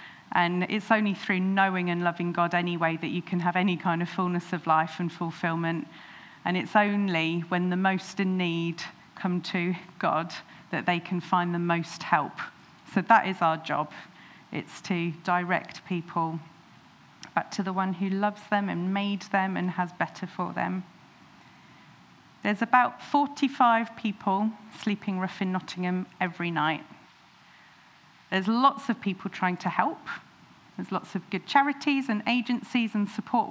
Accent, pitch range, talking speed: British, 180-215 Hz, 160 wpm